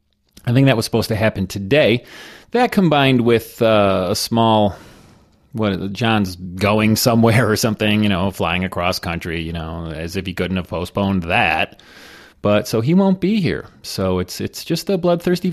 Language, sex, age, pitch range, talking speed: English, male, 30-49, 95-125 Hz, 180 wpm